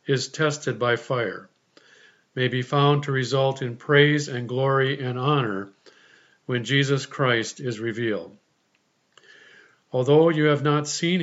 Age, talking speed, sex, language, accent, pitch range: 50-69, 135 wpm, male, English, American, 135-155 Hz